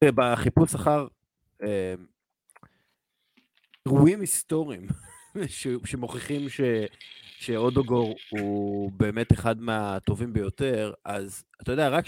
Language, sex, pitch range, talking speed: Hebrew, male, 105-130 Hz, 80 wpm